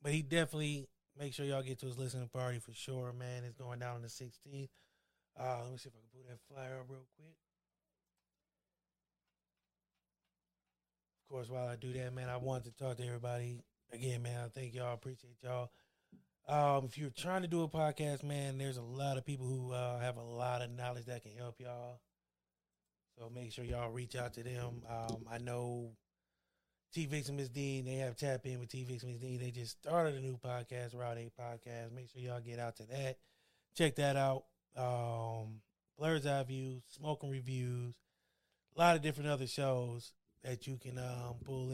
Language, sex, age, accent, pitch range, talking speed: English, male, 20-39, American, 120-135 Hz, 195 wpm